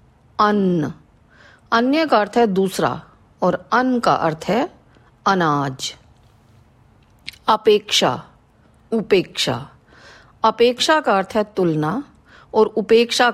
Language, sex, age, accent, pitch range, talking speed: Hindi, female, 40-59, native, 170-240 Hz, 95 wpm